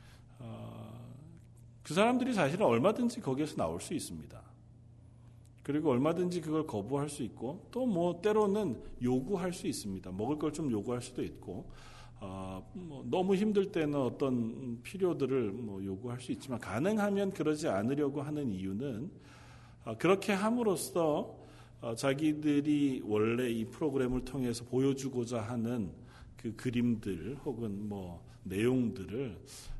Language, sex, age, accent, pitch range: Korean, male, 40-59, native, 115-150 Hz